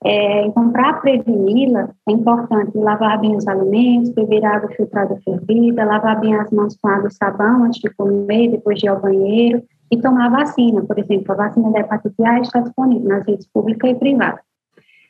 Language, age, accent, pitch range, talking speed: Portuguese, 20-39, Brazilian, 210-240 Hz, 185 wpm